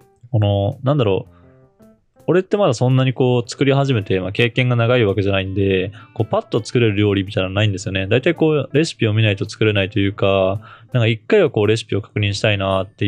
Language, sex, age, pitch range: Japanese, male, 20-39, 100-130 Hz